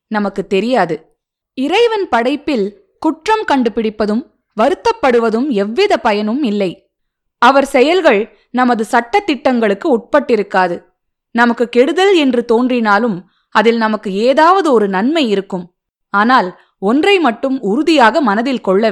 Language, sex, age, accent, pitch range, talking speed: Tamil, female, 20-39, native, 210-295 Hz, 100 wpm